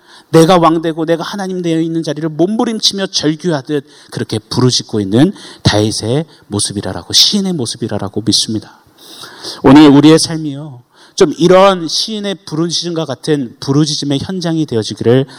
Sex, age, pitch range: male, 30-49, 120-165 Hz